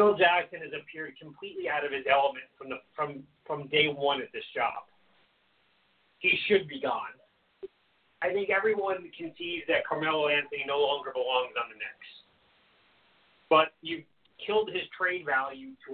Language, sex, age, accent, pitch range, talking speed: English, male, 30-49, American, 150-230 Hz, 160 wpm